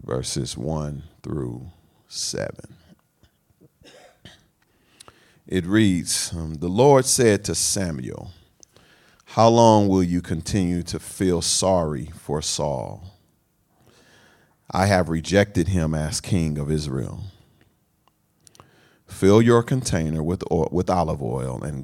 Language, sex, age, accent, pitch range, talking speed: English, male, 40-59, American, 80-105 Hz, 100 wpm